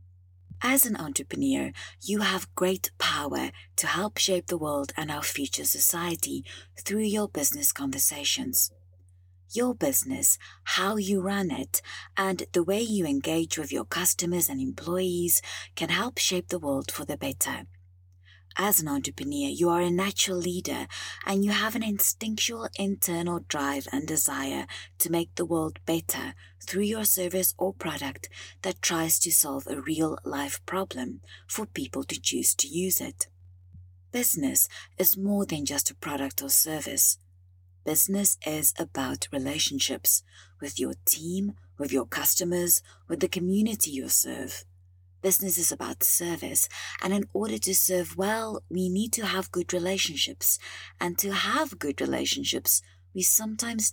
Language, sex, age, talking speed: English, female, 30-49, 145 wpm